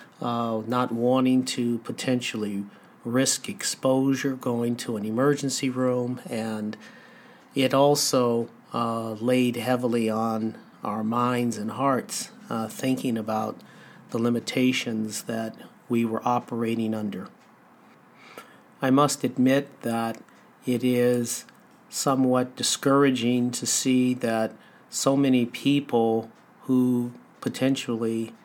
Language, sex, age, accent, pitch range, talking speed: English, male, 50-69, American, 115-130 Hz, 105 wpm